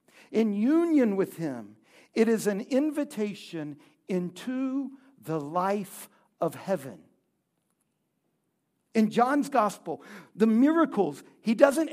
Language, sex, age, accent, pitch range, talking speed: English, male, 60-79, American, 190-265 Hz, 100 wpm